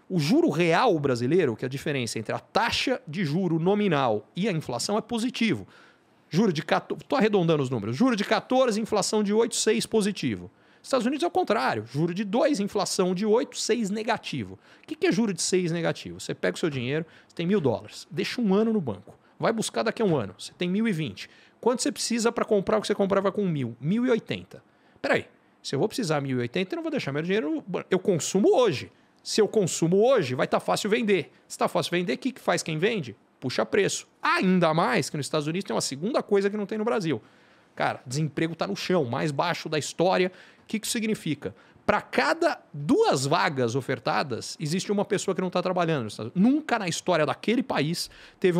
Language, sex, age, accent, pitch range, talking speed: Portuguese, male, 40-59, Brazilian, 155-220 Hz, 215 wpm